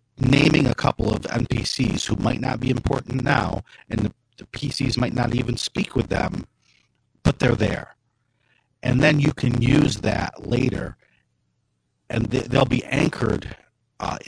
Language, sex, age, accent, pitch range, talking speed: English, male, 50-69, American, 110-130 Hz, 155 wpm